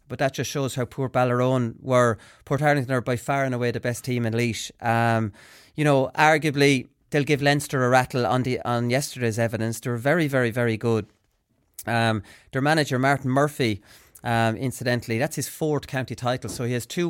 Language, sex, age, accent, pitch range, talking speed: English, male, 30-49, Irish, 120-140 Hz, 195 wpm